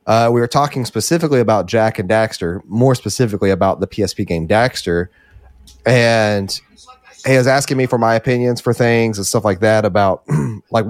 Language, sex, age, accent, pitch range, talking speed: English, male, 30-49, American, 95-125 Hz, 175 wpm